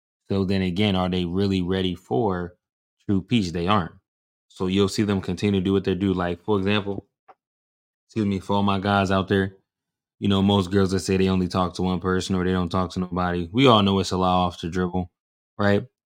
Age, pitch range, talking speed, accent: 20-39, 90-105 Hz, 230 wpm, American